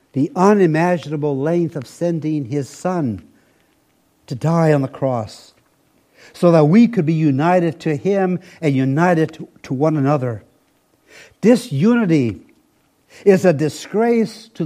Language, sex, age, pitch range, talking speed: English, male, 60-79, 135-175 Hz, 130 wpm